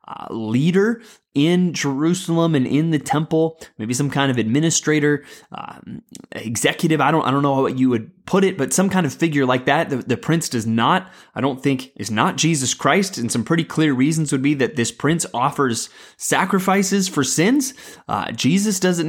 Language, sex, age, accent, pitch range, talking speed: English, male, 20-39, American, 125-165 Hz, 190 wpm